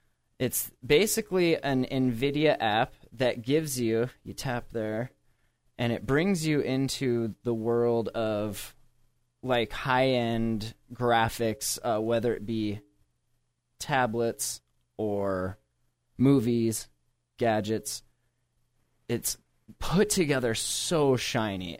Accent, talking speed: American, 95 wpm